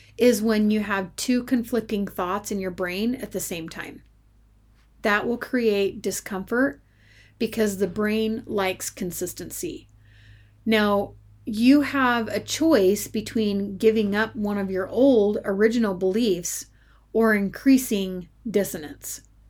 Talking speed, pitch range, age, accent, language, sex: 125 wpm, 180-225 Hz, 30-49, American, English, female